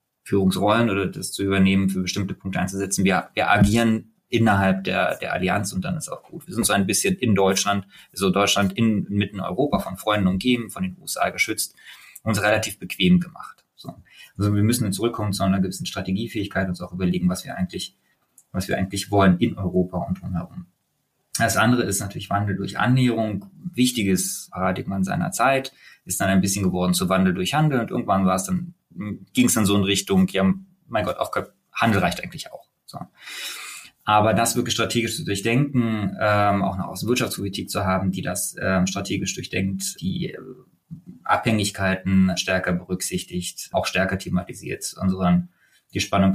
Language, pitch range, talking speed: German, 95-115 Hz, 180 wpm